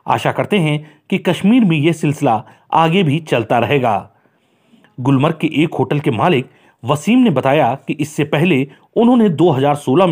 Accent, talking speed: native, 155 wpm